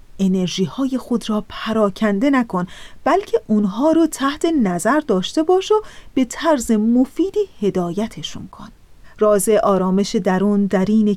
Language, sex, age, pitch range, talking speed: Persian, female, 40-59, 200-255 Hz, 130 wpm